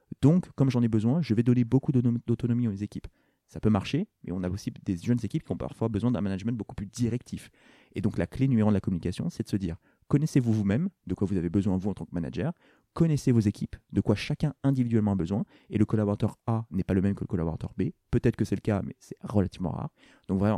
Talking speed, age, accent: 255 wpm, 30-49, French